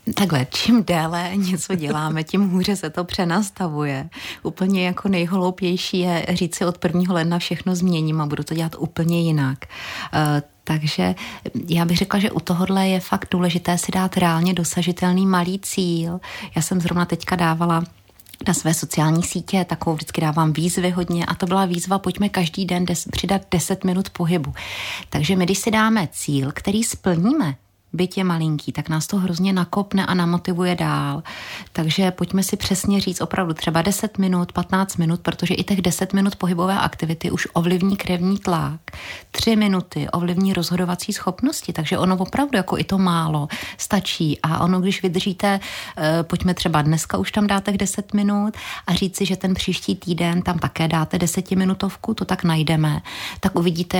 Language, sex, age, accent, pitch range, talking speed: Czech, female, 30-49, native, 165-190 Hz, 170 wpm